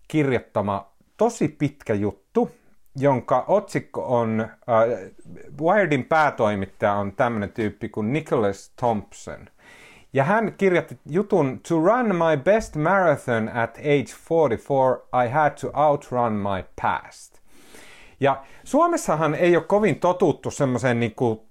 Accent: native